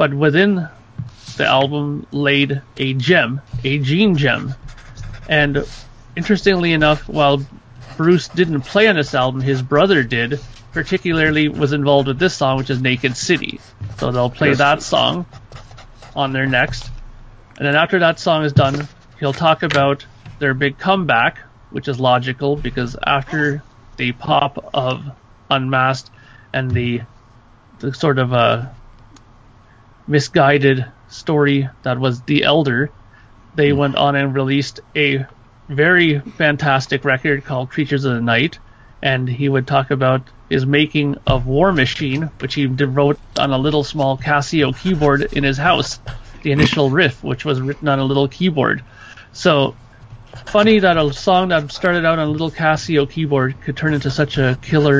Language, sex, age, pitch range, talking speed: English, male, 30-49, 125-150 Hz, 155 wpm